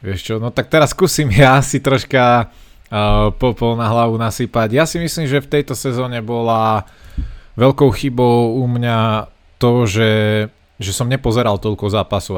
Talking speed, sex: 160 wpm, male